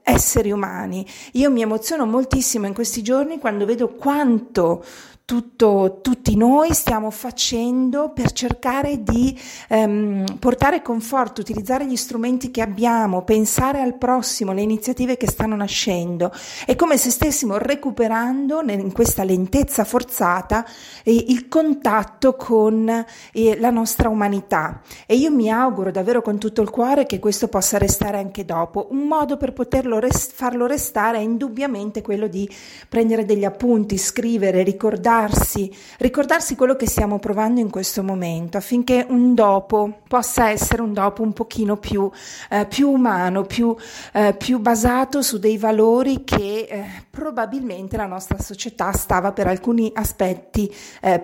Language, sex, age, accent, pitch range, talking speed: Italian, female, 40-59, native, 205-250 Hz, 140 wpm